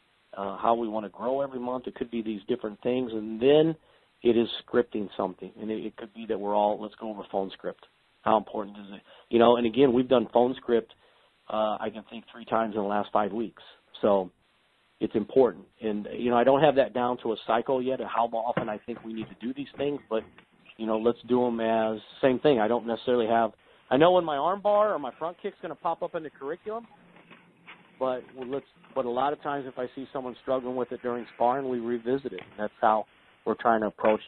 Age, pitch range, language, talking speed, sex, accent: 50-69, 110-130 Hz, English, 240 wpm, male, American